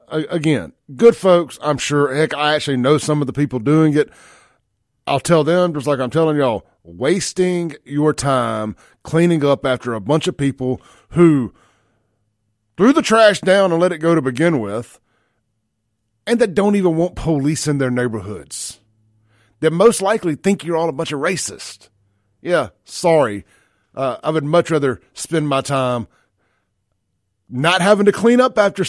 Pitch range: 110-150 Hz